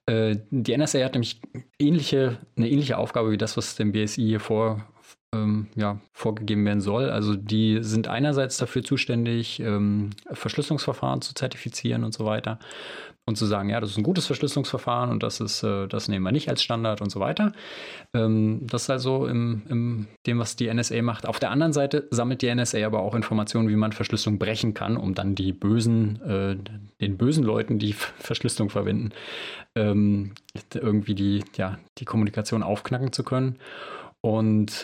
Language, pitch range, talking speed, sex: German, 105-125 Hz, 165 wpm, male